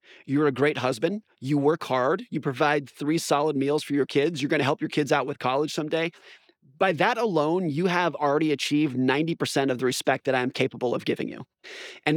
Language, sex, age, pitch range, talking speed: English, male, 30-49, 135-165 Hz, 210 wpm